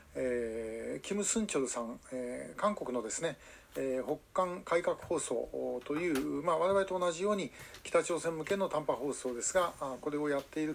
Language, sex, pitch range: Japanese, male, 140-190 Hz